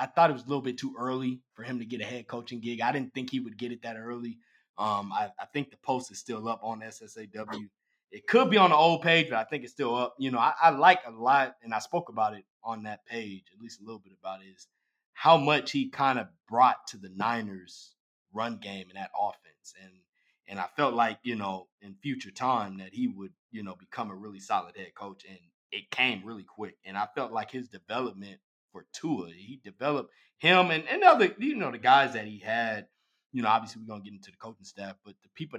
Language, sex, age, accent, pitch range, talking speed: English, male, 20-39, American, 110-150 Hz, 250 wpm